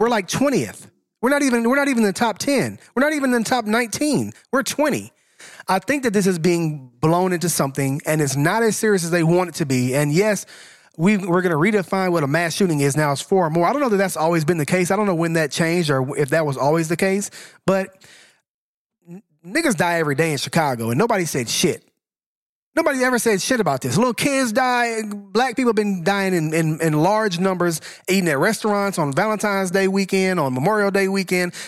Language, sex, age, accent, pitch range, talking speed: English, male, 30-49, American, 160-220 Hz, 225 wpm